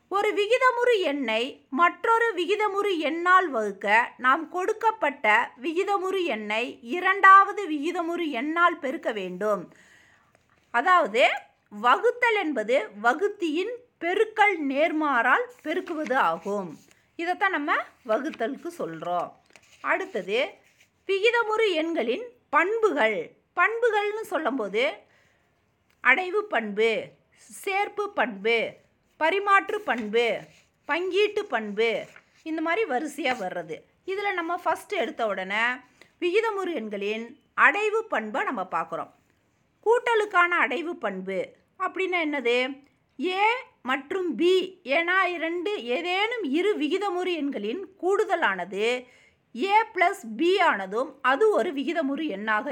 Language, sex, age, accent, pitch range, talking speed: Tamil, female, 50-69, native, 250-395 Hz, 90 wpm